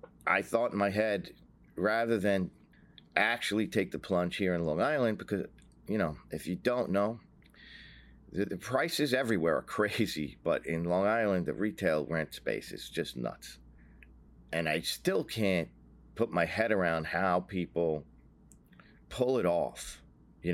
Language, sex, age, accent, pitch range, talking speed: English, male, 40-59, American, 75-100 Hz, 155 wpm